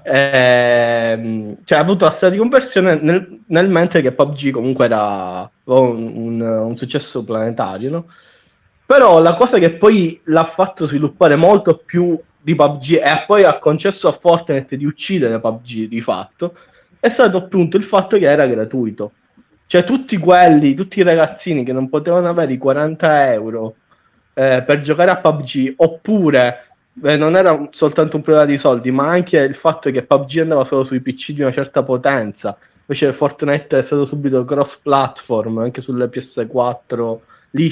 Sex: male